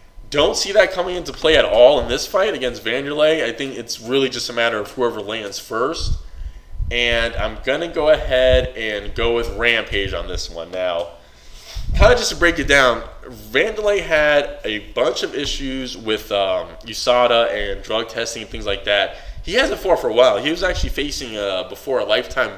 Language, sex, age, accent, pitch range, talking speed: English, male, 20-39, American, 100-150 Hz, 195 wpm